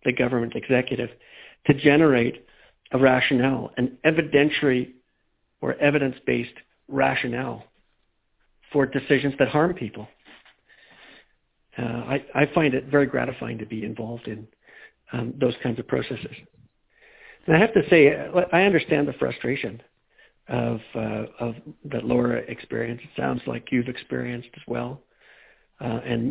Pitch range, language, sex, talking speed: 120-145 Hz, English, male, 130 wpm